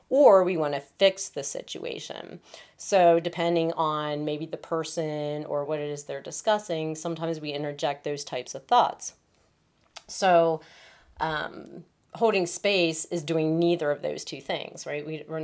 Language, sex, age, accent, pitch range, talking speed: English, female, 30-49, American, 145-170 Hz, 150 wpm